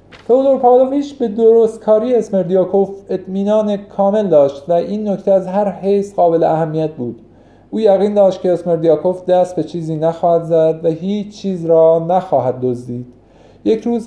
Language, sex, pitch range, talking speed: Persian, male, 150-205 Hz, 155 wpm